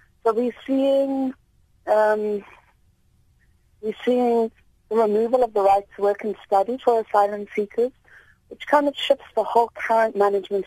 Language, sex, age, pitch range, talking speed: English, female, 30-49, 185-225 Hz, 145 wpm